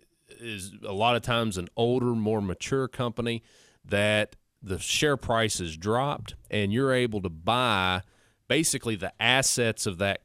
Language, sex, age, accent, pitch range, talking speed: English, male, 30-49, American, 100-125 Hz, 150 wpm